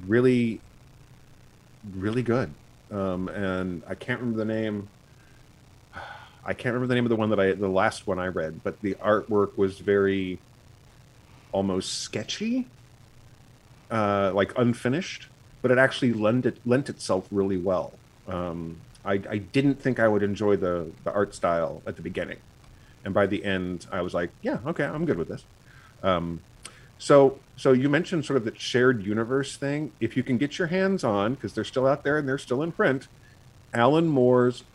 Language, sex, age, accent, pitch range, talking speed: English, male, 40-59, American, 100-125 Hz, 175 wpm